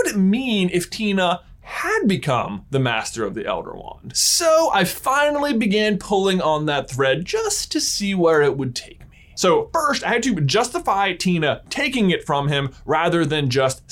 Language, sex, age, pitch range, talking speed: English, male, 20-39, 150-215 Hz, 190 wpm